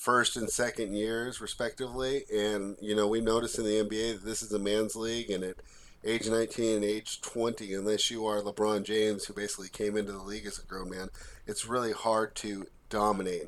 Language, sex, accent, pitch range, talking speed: English, male, American, 95-110 Hz, 205 wpm